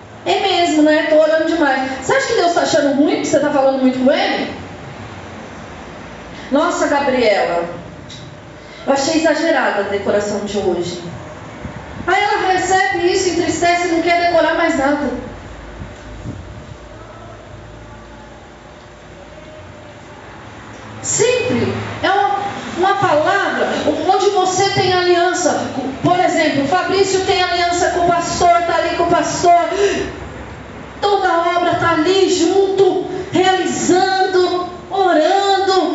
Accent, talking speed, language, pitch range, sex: Brazilian, 115 wpm, Portuguese, 255-370 Hz, female